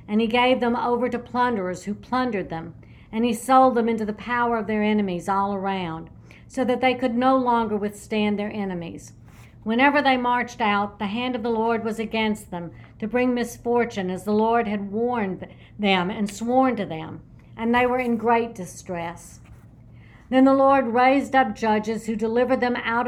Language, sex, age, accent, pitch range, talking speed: English, female, 60-79, American, 195-245 Hz, 185 wpm